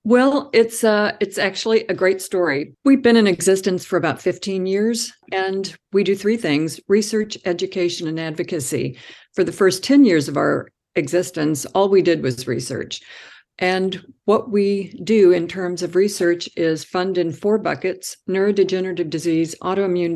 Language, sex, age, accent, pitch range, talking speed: English, female, 50-69, American, 160-190 Hz, 160 wpm